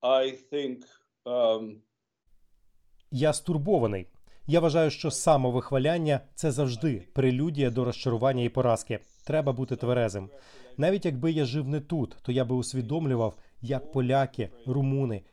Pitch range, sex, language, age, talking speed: 120-155 Hz, male, Ukrainian, 30-49, 115 wpm